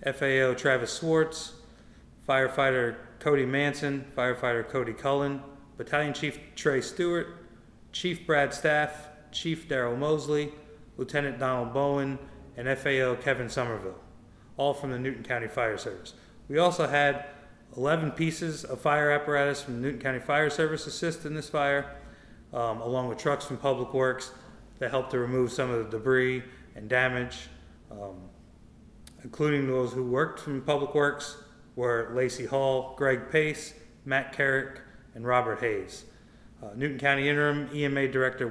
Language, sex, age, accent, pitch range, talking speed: English, male, 30-49, American, 125-145 Hz, 145 wpm